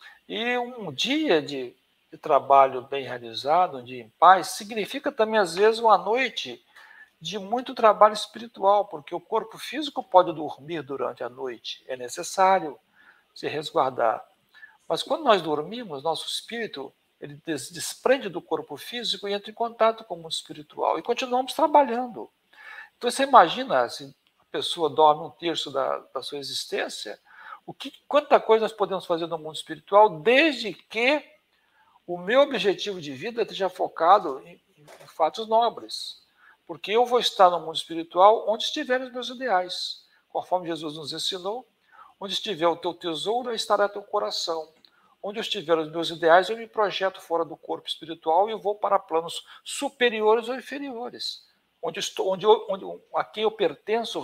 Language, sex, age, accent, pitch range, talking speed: Portuguese, male, 60-79, Brazilian, 160-235 Hz, 160 wpm